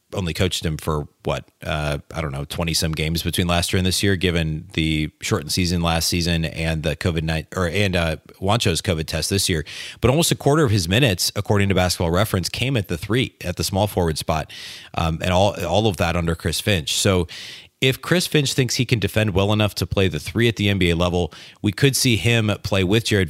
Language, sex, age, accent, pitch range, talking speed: English, male, 30-49, American, 85-105 Hz, 230 wpm